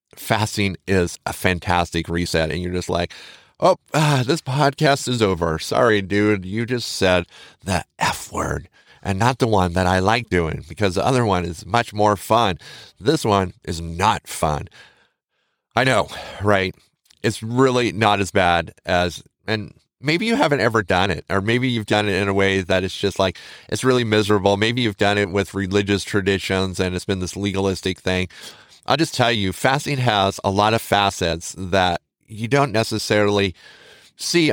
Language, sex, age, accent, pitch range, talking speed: English, male, 30-49, American, 95-115 Hz, 175 wpm